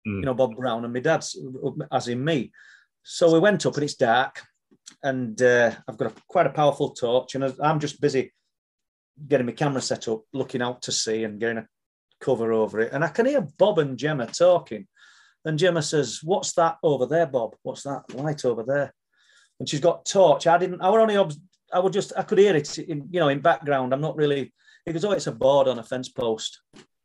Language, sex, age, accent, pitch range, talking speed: English, male, 30-49, British, 125-170 Hz, 215 wpm